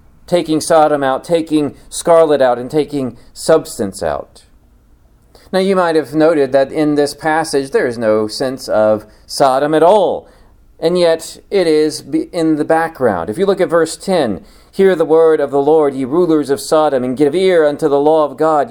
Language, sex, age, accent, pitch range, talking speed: English, male, 40-59, American, 130-165 Hz, 185 wpm